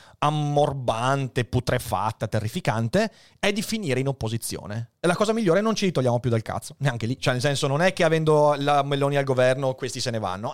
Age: 30-49